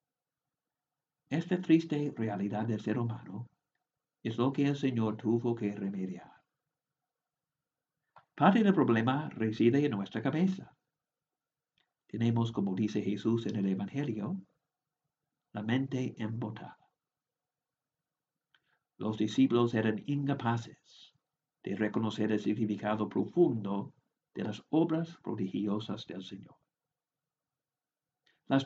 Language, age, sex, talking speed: English, 60-79, male, 100 wpm